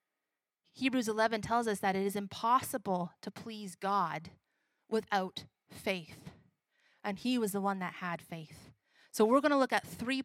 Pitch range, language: 200-265 Hz, English